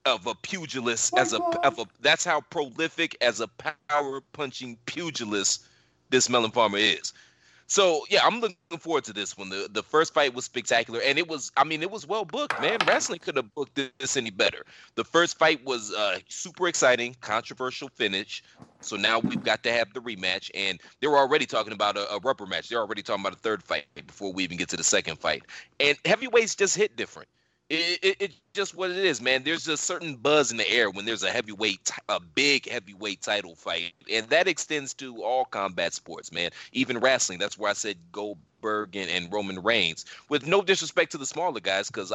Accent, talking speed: American, 210 wpm